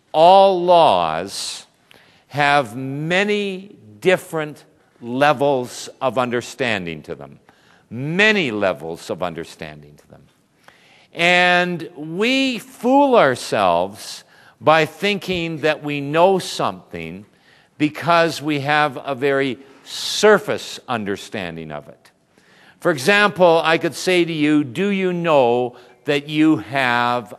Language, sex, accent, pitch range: English, male, American, 130-190 Hz